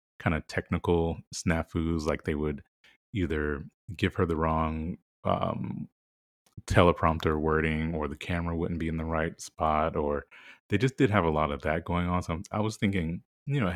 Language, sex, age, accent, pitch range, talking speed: English, male, 30-49, American, 75-95 Hz, 185 wpm